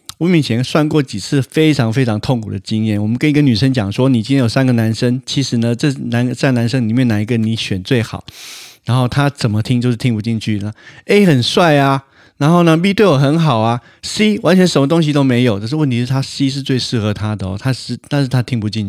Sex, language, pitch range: male, Chinese, 110-135 Hz